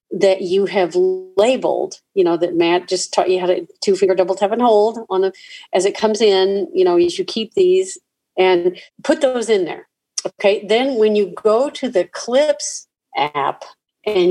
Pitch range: 180-255 Hz